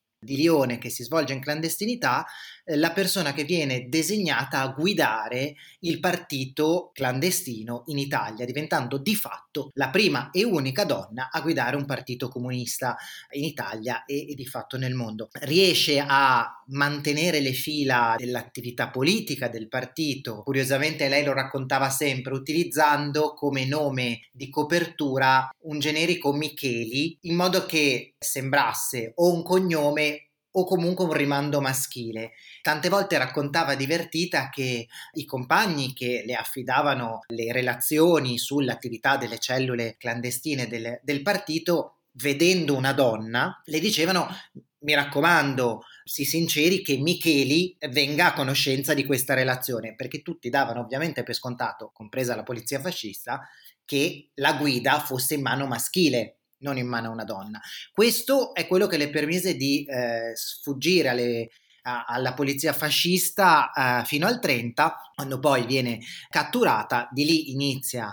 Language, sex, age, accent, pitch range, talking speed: Italian, male, 30-49, native, 125-155 Hz, 135 wpm